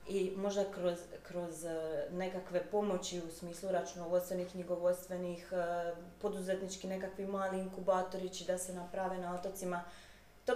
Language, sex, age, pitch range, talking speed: Croatian, female, 20-39, 180-215 Hz, 115 wpm